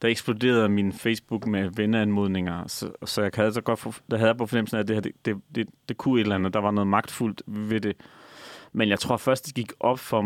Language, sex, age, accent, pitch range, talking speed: Danish, male, 30-49, native, 105-125 Hz, 250 wpm